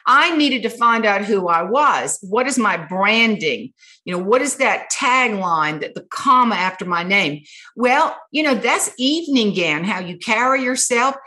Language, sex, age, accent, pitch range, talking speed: English, female, 50-69, American, 205-275 Hz, 180 wpm